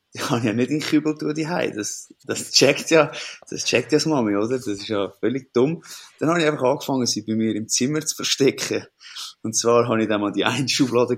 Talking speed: 225 wpm